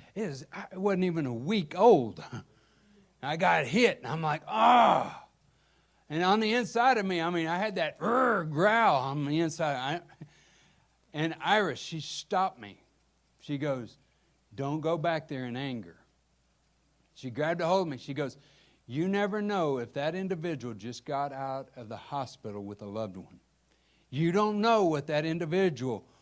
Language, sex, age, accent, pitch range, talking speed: English, male, 60-79, American, 150-200 Hz, 170 wpm